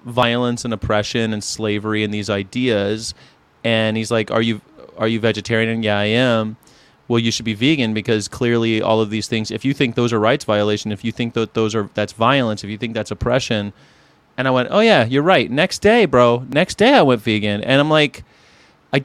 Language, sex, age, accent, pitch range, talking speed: English, male, 30-49, American, 115-175 Hz, 215 wpm